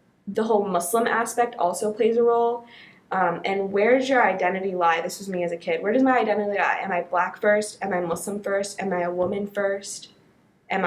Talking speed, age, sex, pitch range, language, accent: 215 wpm, 20-39, female, 180-215 Hz, English, American